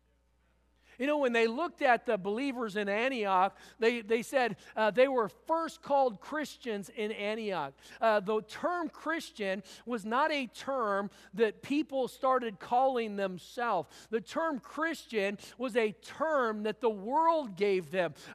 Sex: male